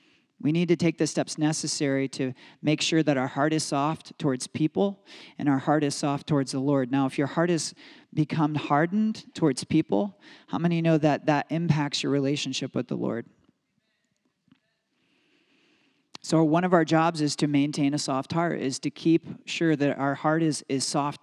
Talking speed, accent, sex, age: 185 wpm, American, male, 40-59